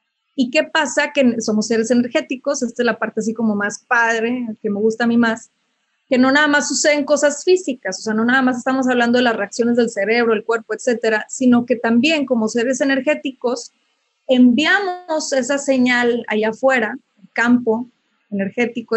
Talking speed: 180 wpm